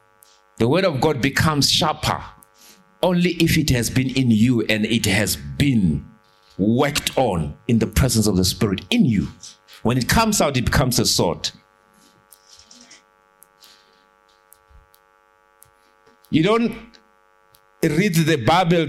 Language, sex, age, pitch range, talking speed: English, male, 50-69, 100-145 Hz, 125 wpm